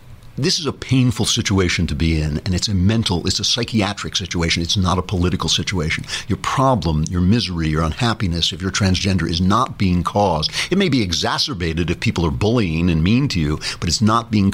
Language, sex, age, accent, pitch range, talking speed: English, male, 60-79, American, 90-125 Hz, 205 wpm